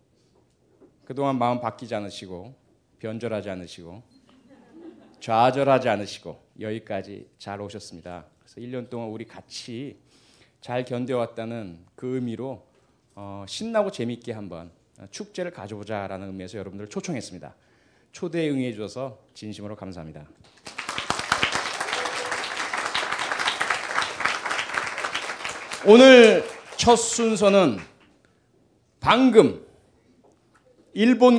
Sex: male